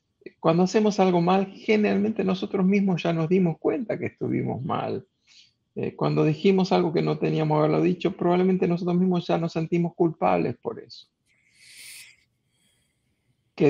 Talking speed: 145 wpm